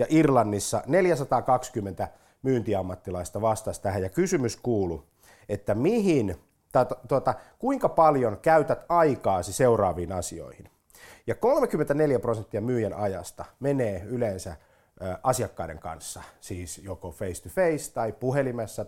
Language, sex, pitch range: Finnish, male, 95-130 Hz